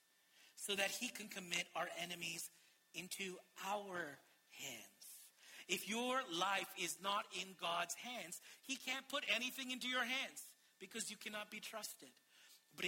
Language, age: English, 40-59